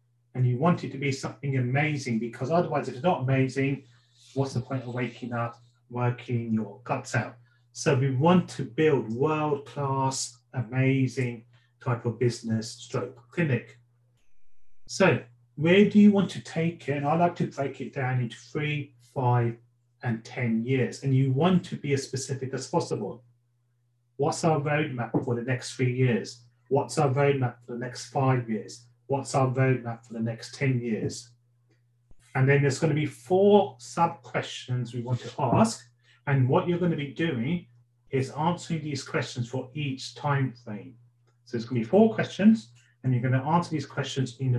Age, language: 30-49, English